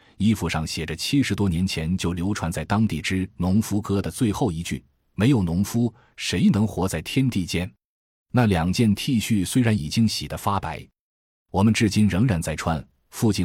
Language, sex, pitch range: Chinese, male, 80-110 Hz